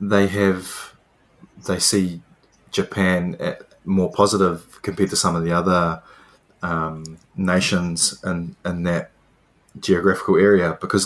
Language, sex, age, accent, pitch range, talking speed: English, male, 20-39, Australian, 85-100 Hz, 120 wpm